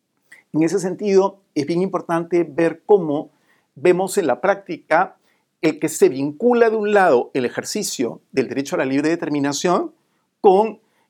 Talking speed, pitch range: 150 wpm, 150-200 Hz